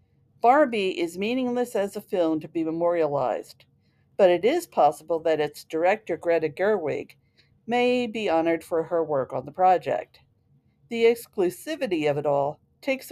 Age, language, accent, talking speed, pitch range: 50-69, English, American, 150 wpm, 170-240 Hz